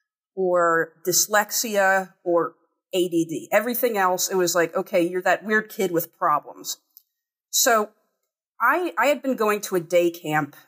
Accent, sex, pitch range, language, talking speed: American, female, 170-205 Hz, English, 145 wpm